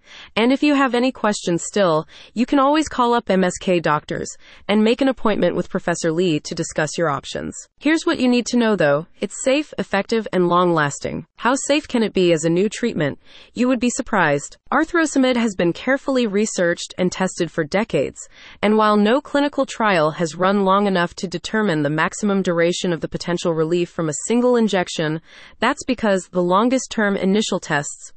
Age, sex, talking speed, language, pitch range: 30-49, female, 185 wpm, English, 170-235 Hz